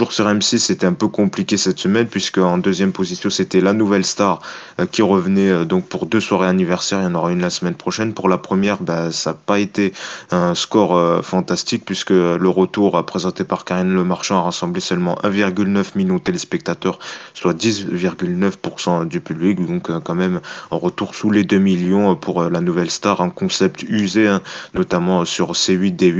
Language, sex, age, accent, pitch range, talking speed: French, male, 20-39, French, 90-105 Hz, 180 wpm